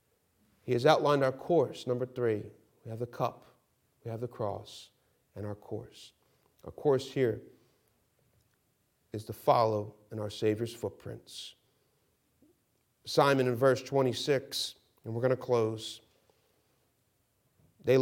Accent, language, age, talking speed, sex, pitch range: American, English, 40-59, 125 wpm, male, 110-140 Hz